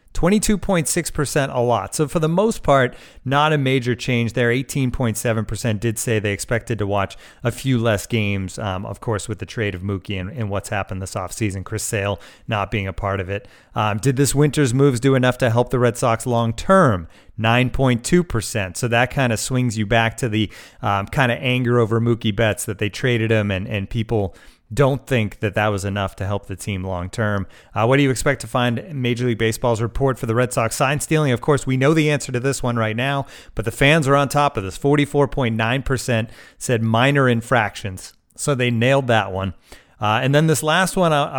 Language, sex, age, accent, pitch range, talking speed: English, male, 30-49, American, 110-135 Hz, 205 wpm